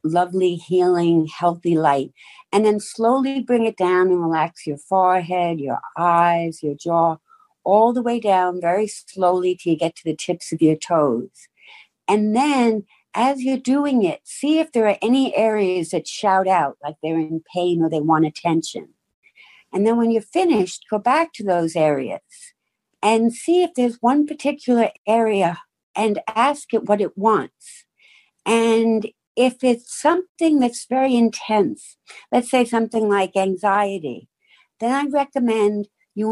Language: English